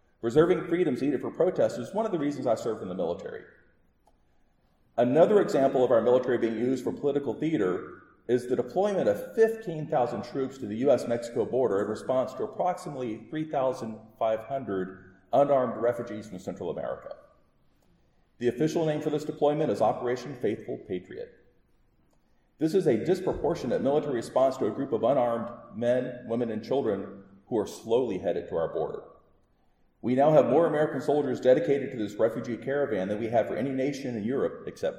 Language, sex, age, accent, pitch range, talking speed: English, male, 40-59, American, 110-155 Hz, 165 wpm